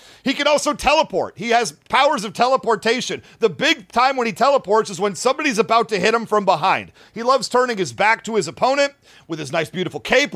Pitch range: 195-240 Hz